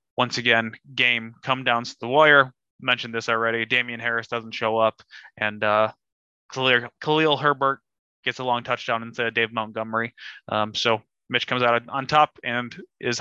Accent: American